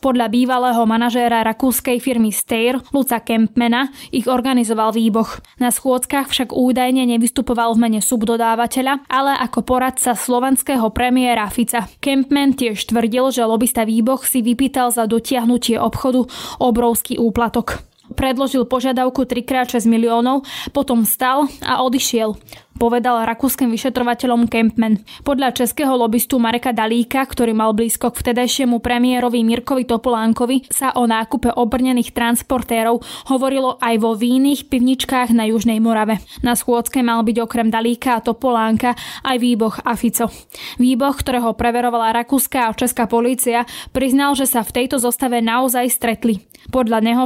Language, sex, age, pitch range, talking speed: Slovak, female, 10-29, 230-255 Hz, 130 wpm